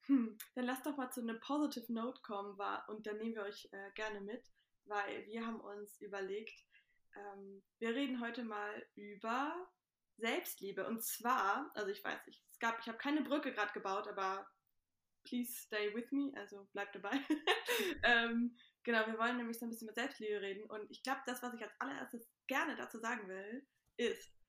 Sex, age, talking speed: female, 20-39, 180 wpm